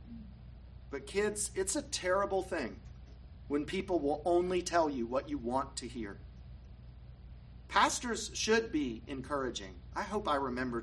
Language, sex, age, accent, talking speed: English, male, 40-59, American, 140 wpm